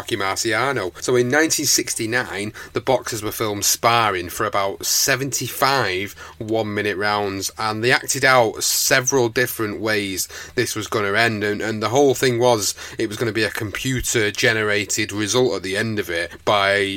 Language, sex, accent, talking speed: English, male, British, 175 wpm